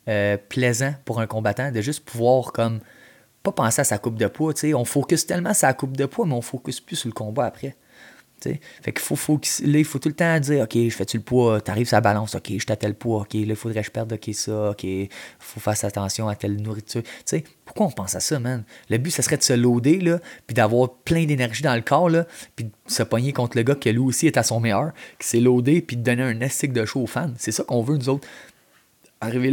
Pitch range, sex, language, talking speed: 110-145 Hz, male, French, 265 wpm